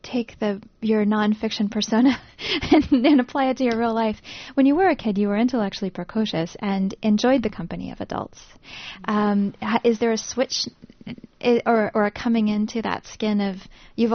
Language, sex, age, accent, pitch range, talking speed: English, female, 10-29, American, 190-225 Hz, 180 wpm